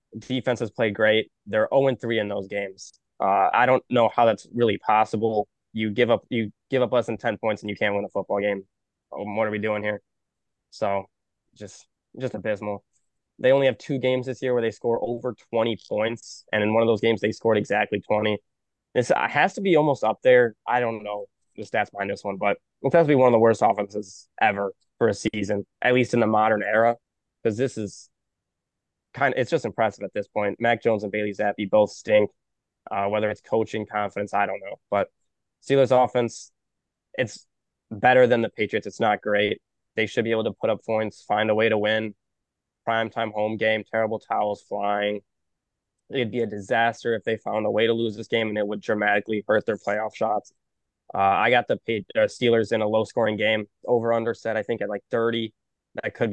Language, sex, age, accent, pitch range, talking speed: English, male, 20-39, American, 105-115 Hz, 210 wpm